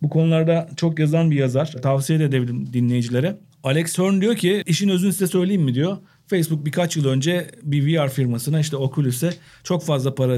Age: 40-59